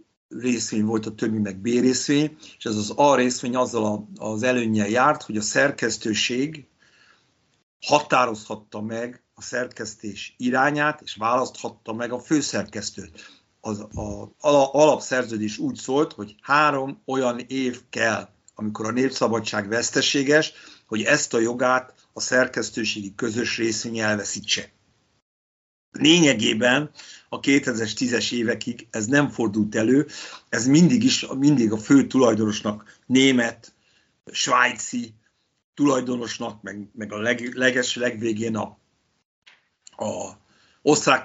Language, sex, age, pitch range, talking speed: Hungarian, male, 50-69, 110-130 Hz, 115 wpm